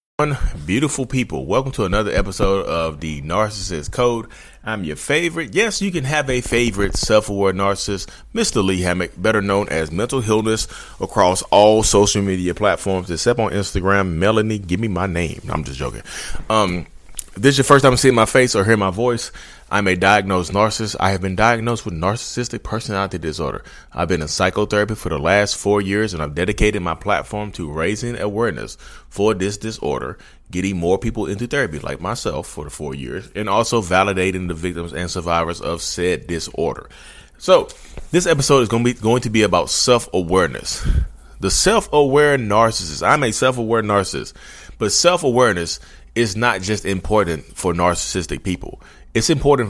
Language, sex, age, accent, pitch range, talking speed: English, male, 30-49, American, 90-120 Hz, 170 wpm